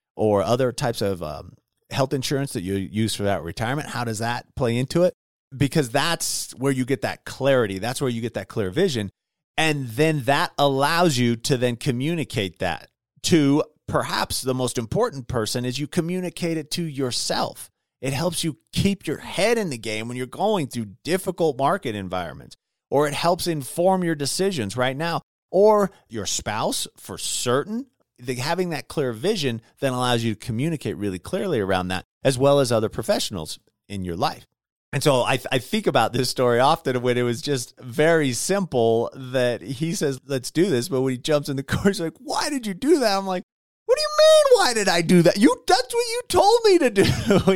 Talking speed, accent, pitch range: 200 wpm, American, 120-180 Hz